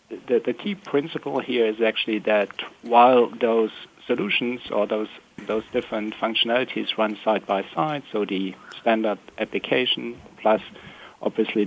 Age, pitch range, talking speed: 60-79, 105-120 Hz, 135 wpm